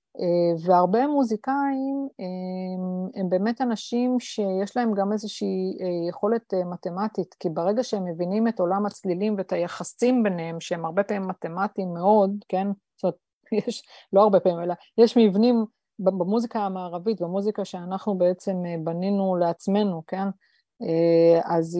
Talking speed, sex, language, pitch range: 125 wpm, female, Hebrew, 175-215 Hz